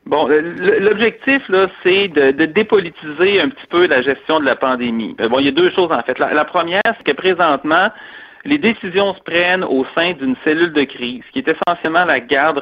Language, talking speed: French, 210 wpm